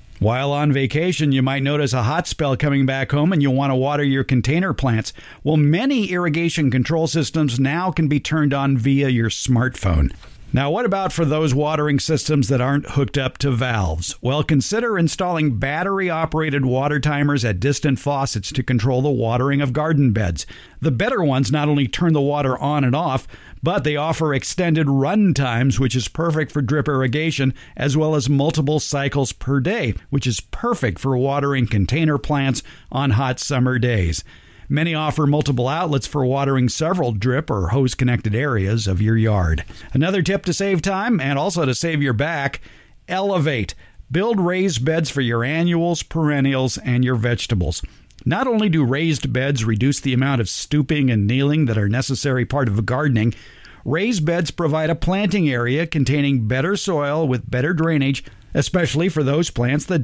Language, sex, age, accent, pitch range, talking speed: English, male, 50-69, American, 125-155 Hz, 175 wpm